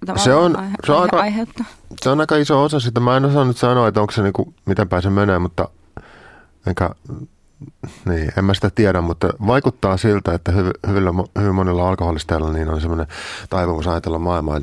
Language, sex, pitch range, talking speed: Finnish, male, 80-95 Hz, 175 wpm